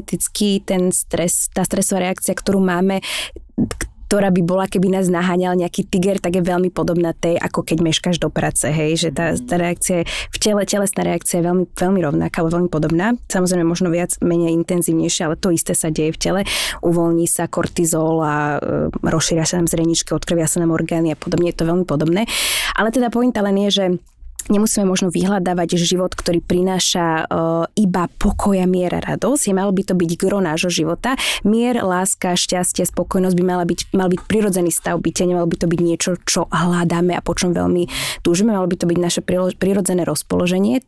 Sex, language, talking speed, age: female, Slovak, 185 wpm, 20-39